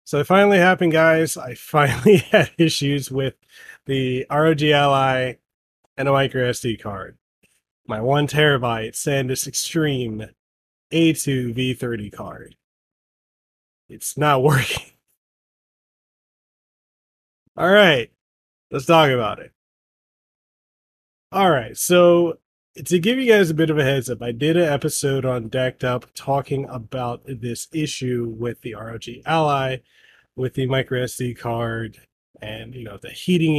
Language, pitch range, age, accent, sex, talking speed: English, 120-155 Hz, 20-39, American, male, 130 wpm